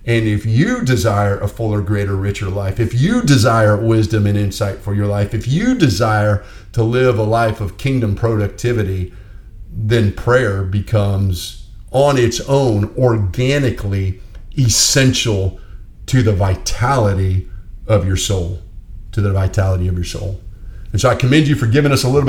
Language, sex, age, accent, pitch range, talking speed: English, male, 40-59, American, 100-125 Hz, 155 wpm